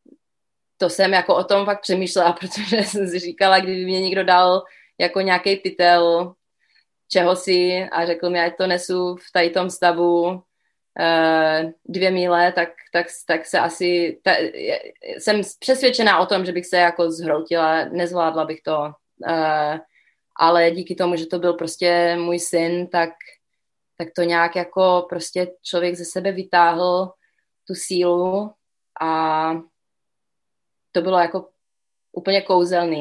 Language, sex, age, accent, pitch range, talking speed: Czech, female, 20-39, native, 160-180 Hz, 145 wpm